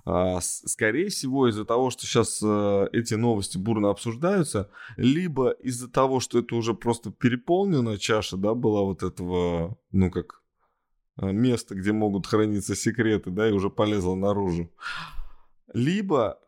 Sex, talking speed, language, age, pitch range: male, 130 wpm, Russian, 20-39, 95-120 Hz